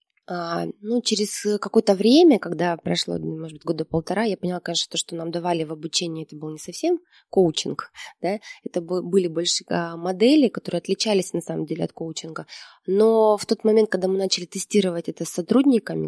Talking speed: 180 wpm